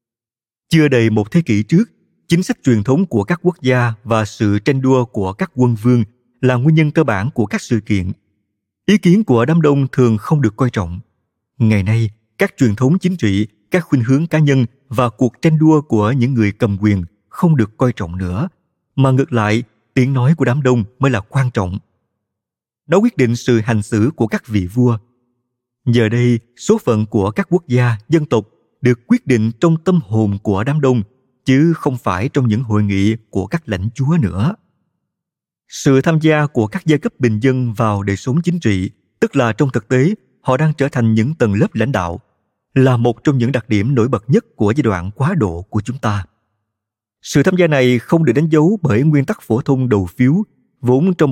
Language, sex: Vietnamese, male